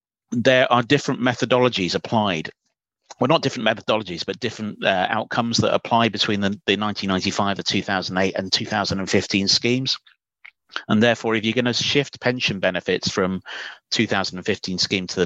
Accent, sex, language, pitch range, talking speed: British, male, English, 90-115 Hz, 150 wpm